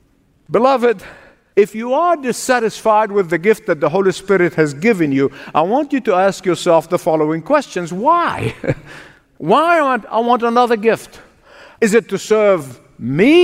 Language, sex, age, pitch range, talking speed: English, male, 50-69, 180-240 Hz, 155 wpm